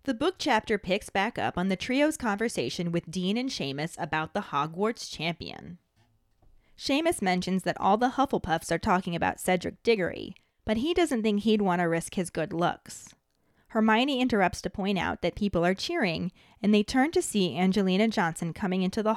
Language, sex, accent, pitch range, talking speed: English, female, American, 175-220 Hz, 185 wpm